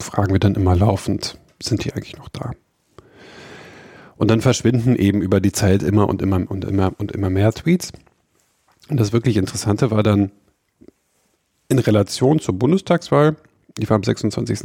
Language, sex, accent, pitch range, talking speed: German, male, German, 100-125 Hz, 165 wpm